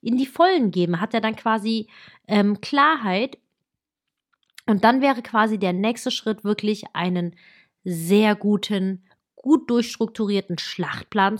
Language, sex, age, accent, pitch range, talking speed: German, female, 30-49, German, 205-265 Hz, 130 wpm